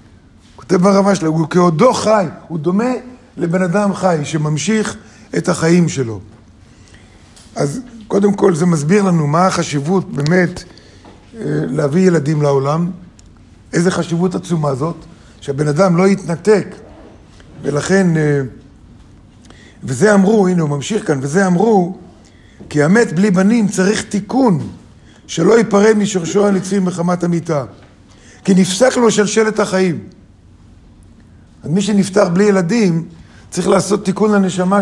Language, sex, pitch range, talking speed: Hebrew, male, 140-195 Hz, 120 wpm